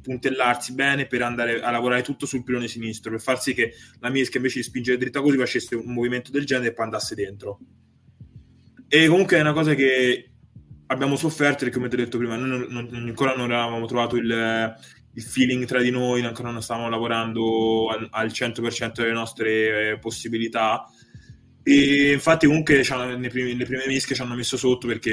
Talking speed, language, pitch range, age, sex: 185 wpm, Italian, 115-130 Hz, 20-39, male